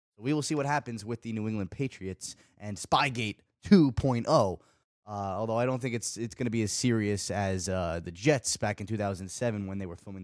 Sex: male